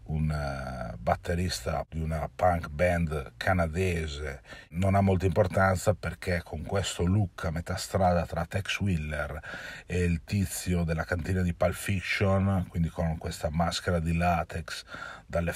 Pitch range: 80-95 Hz